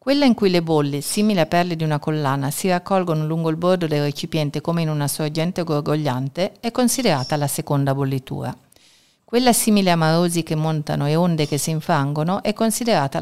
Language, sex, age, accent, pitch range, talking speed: Italian, female, 50-69, native, 145-180 Hz, 185 wpm